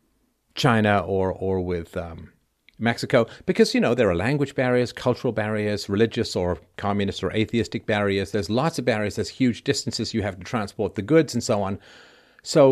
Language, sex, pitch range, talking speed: English, male, 100-120 Hz, 180 wpm